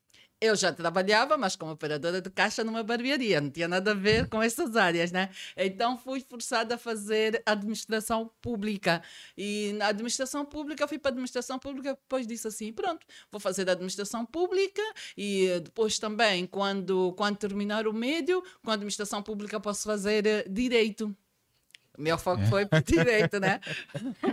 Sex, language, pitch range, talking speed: female, Portuguese, 185-225 Hz, 165 wpm